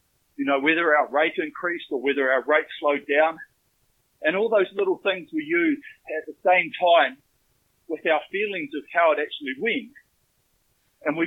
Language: English